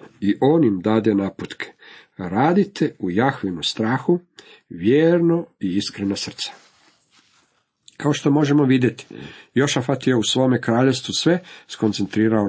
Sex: male